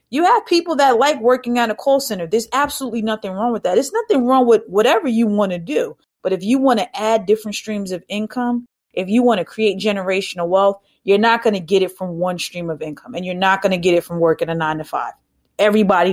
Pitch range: 185-235 Hz